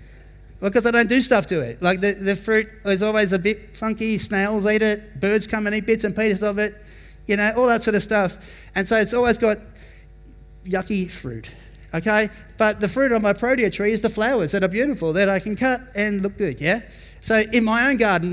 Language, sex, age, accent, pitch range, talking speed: English, male, 30-49, Australian, 175-215 Hz, 230 wpm